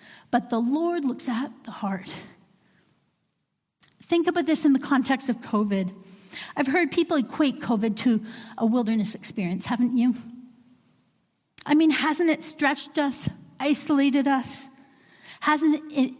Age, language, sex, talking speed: 50-69, English, female, 135 wpm